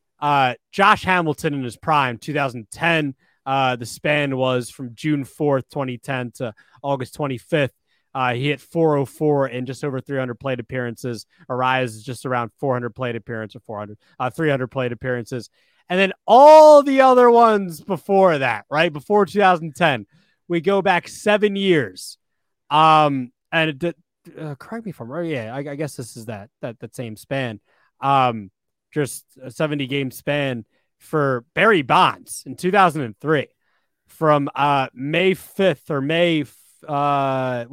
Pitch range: 125-160 Hz